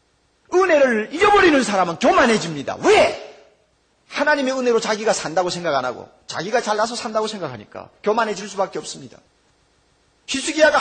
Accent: native